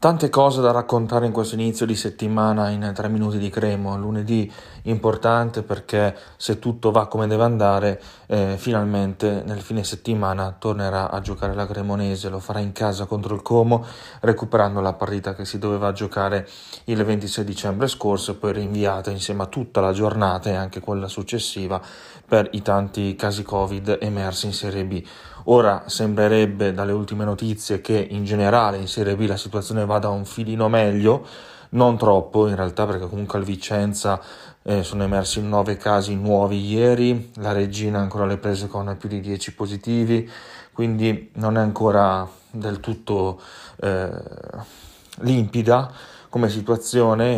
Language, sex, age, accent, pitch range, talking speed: Italian, male, 20-39, native, 100-110 Hz, 160 wpm